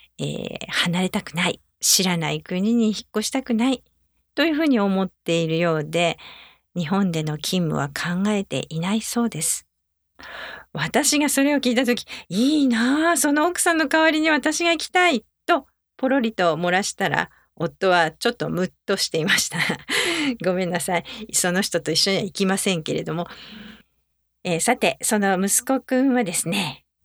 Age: 50-69